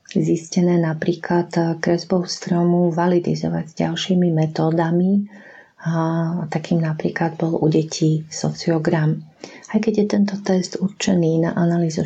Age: 40-59